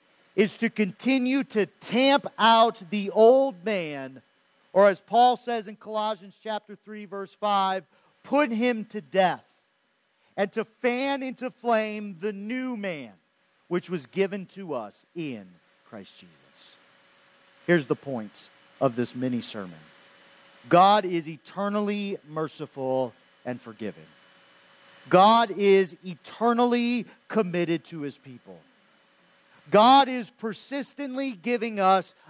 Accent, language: American, English